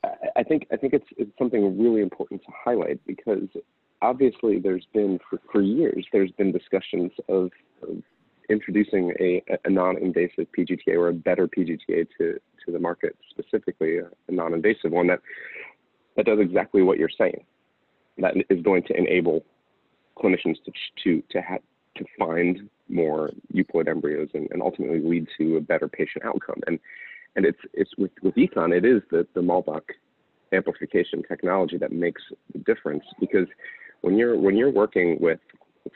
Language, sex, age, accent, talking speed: English, male, 30-49, American, 165 wpm